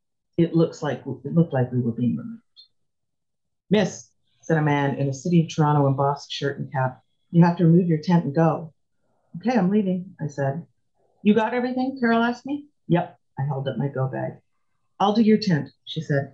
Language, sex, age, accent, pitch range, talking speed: English, female, 40-59, American, 140-185 Hz, 200 wpm